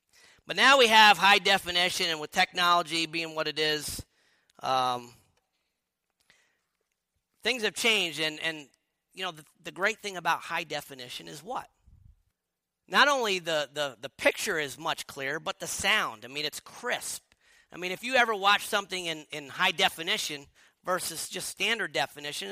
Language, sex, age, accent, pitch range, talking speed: English, male, 40-59, American, 150-205 Hz, 165 wpm